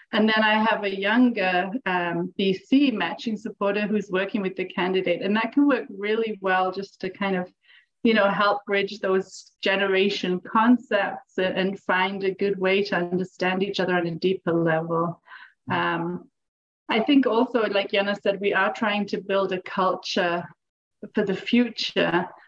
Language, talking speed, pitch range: English, 165 wpm, 185-220 Hz